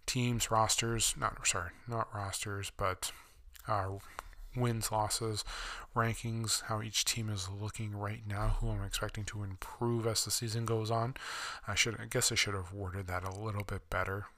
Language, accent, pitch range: English, American, 100-115 Hz